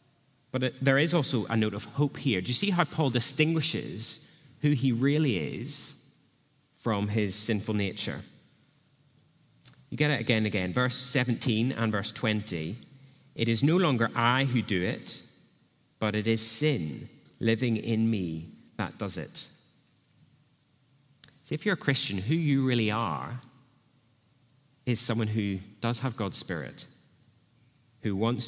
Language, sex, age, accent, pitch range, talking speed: English, male, 30-49, British, 110-135 Hz, 145 wpm